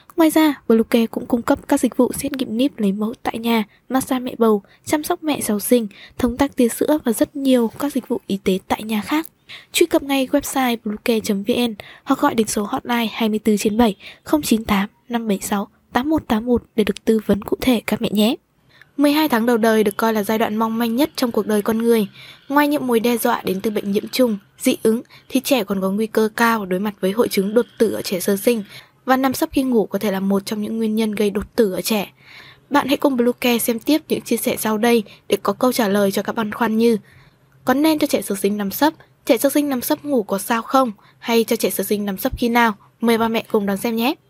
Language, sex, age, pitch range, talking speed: Vietnamese, female, 10-29, 210-260 Hz, 240 wpm